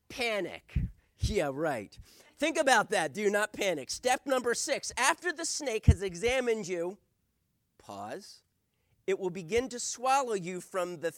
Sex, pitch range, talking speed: male, 175-255 Hz, 145 wpm